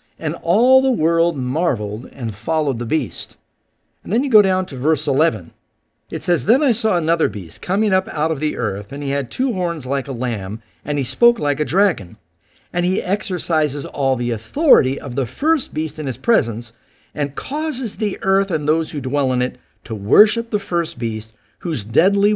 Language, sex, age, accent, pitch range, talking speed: English, male, 50-69, American, 130-200 Hz, 200 wpm